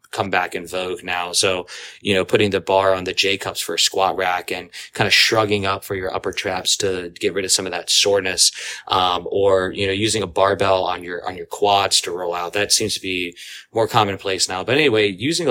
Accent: American